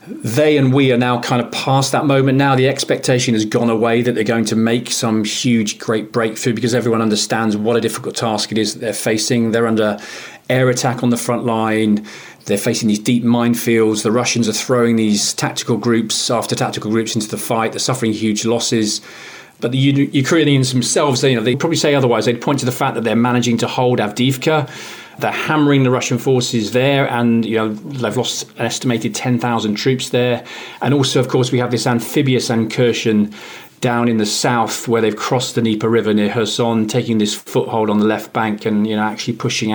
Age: 40-59